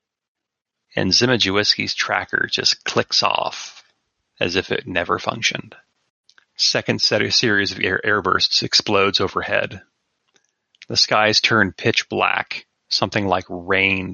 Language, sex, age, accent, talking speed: English, male, 30-49, American, 115 wpm